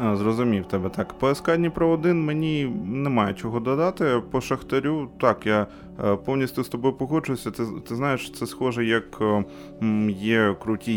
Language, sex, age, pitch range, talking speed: Ukrainian, male, 20-39, 95-130 Hz, 135 wpm